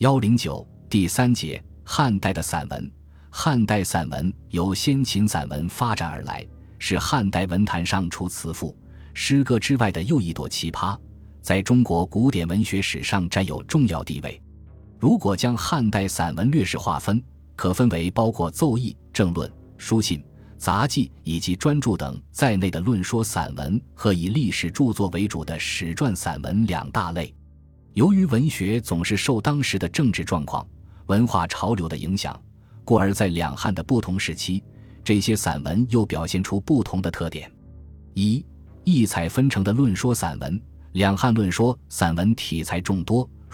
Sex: male